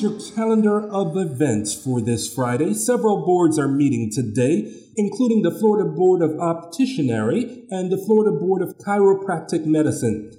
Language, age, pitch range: English, 40-59, 145-195 Hz